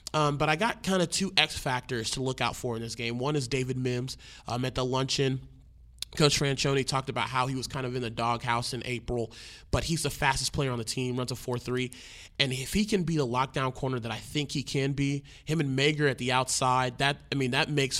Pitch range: 125-140 Hz